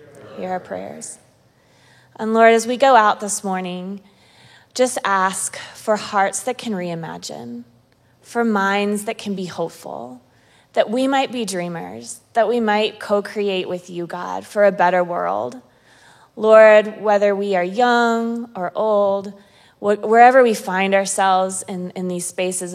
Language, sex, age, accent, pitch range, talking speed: English, female, 20-39, American, 170-205 Hz, 145 wpm